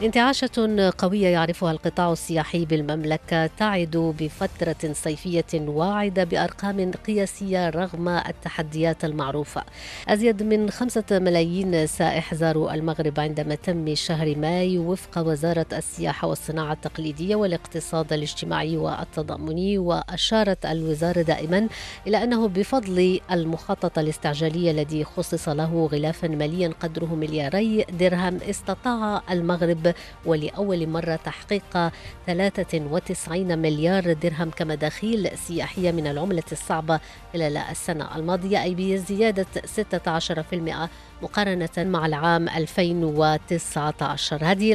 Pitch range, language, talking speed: 160-185 Hz, English, 100 wpm